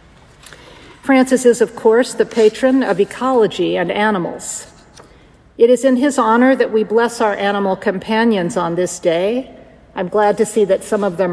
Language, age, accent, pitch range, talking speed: English, 50-69, American, 195-240 Hz, 170 wpm